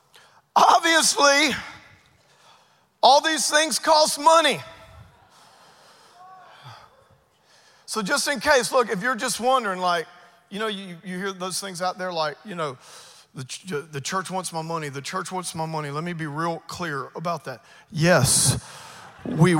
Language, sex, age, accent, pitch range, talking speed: English, male, 40-59, American, 165-195 Hz, 145 wpm